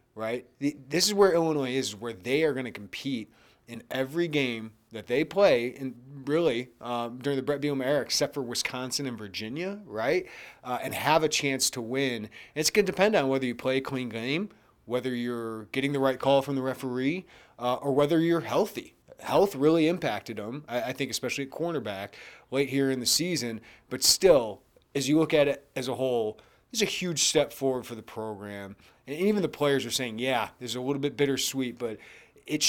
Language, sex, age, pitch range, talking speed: English, male, 30-49, 125-150 Hz, 205 wpm